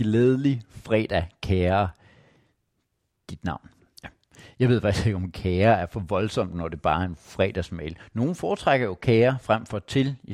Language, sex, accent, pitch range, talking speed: Danish, male, native, 95-125 Hz, 165 wpm